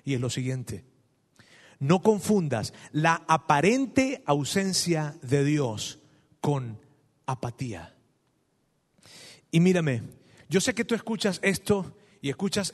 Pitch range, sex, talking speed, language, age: 145-185 Hz, male, 110 wpm, Spanish, 40-59